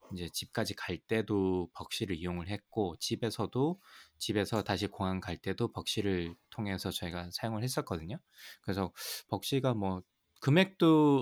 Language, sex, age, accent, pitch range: Korean, male, 20-39, native, 95-125 Hz